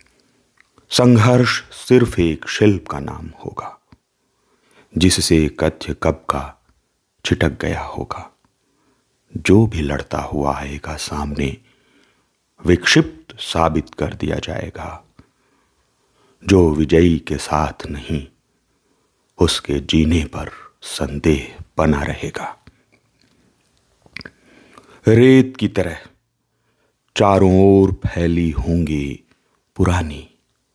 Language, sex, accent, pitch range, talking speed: Hindi, male, native, 75-95 Hz, 85 wpm